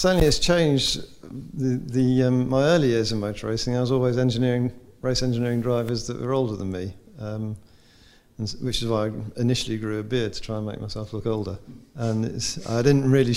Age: 50-69